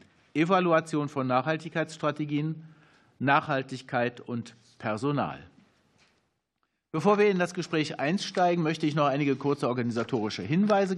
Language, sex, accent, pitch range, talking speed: German, male, German, 125-160 Hz, 105 wpm